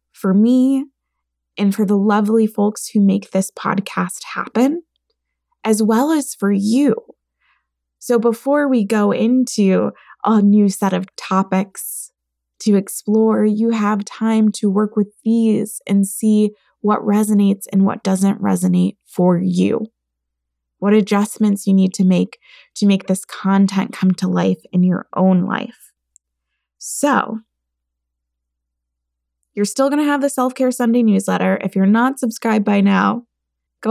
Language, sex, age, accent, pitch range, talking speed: English, female, 20-39, American, 190-235 Hz, 140 wpm